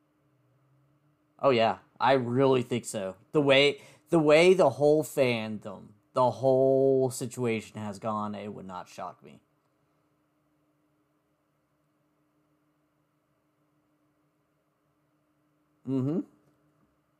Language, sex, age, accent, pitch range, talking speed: English, male, 50-69, American, 135-150 Hz, 85 wpm